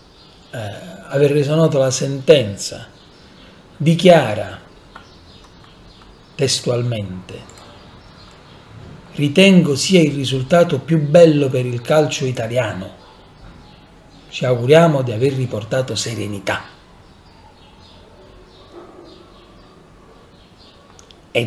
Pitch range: 100-145 Hz